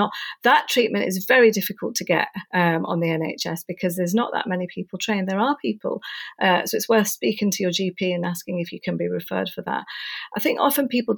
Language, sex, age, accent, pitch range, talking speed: English, female, 40-59, British, 185-220 Hz, 225 wpm